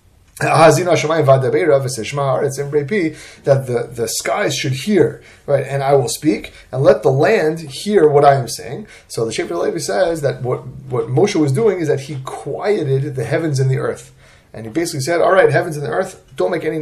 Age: 30-49